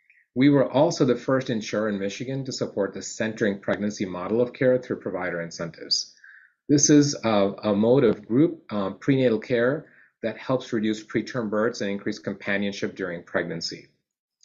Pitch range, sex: 100-130 Hz, male